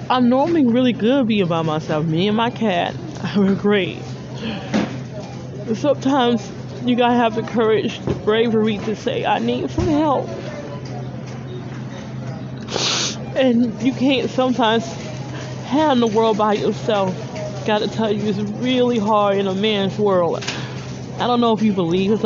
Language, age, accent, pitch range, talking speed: English, 20-39, American, 170-220 Hz, 150 wpm